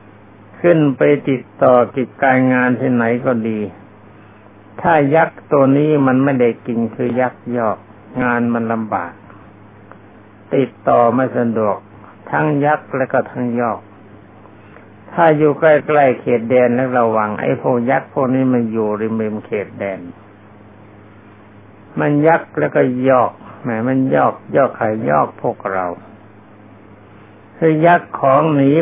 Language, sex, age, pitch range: Thai, male, 60-79, 105-130 Hz